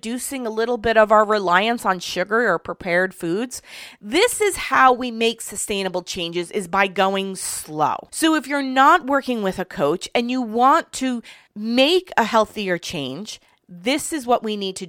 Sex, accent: female, American